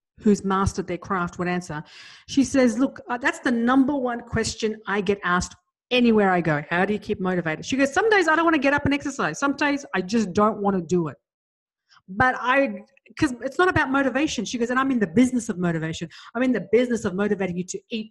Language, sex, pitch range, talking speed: English, female, 200-255 Hz, 240 wpm